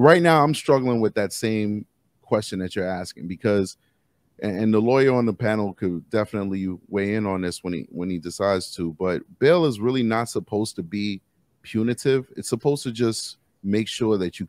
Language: English